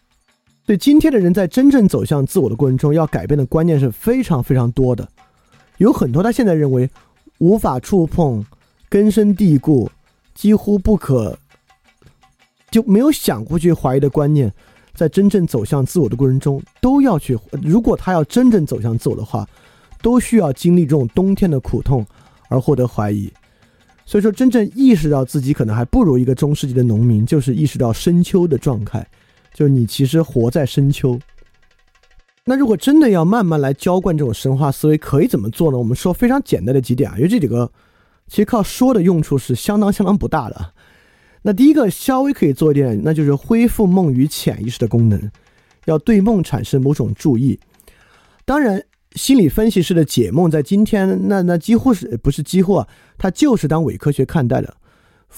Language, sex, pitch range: Chinese, male, 130-200 Hz